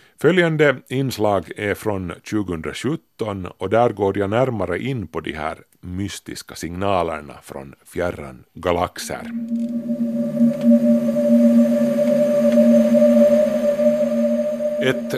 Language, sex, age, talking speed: Swedish, male, 30-49, 80 wpm